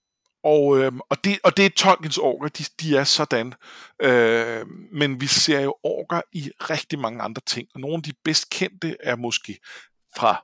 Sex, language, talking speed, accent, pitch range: male, Danish, 190 wpm, native, 120-160 Hz